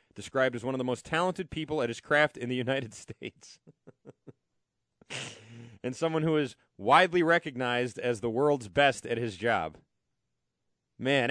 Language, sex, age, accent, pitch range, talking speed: English, male, 30-49, American, 120-170 Hz, 155 wpm